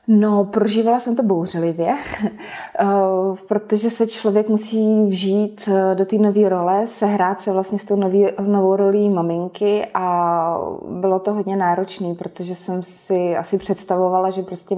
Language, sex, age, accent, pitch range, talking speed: Czech, female, 20-39, native, 180-200 Hz, 140 wpm